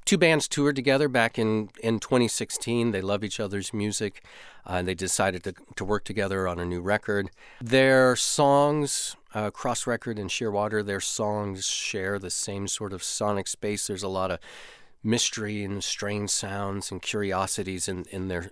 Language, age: English, 40-59